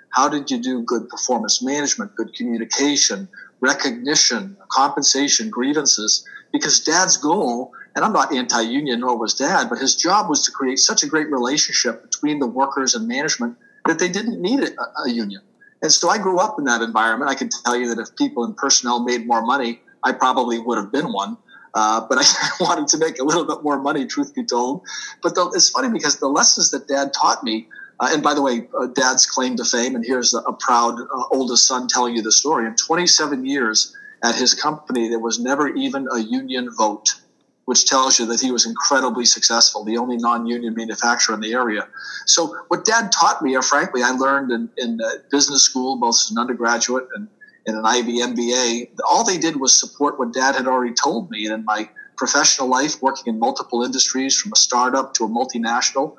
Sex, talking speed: male, 205 wpm